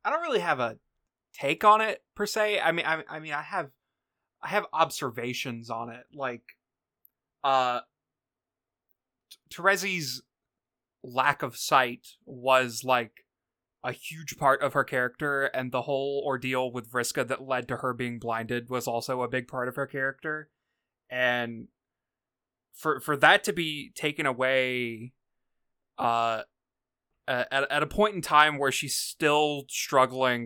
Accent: American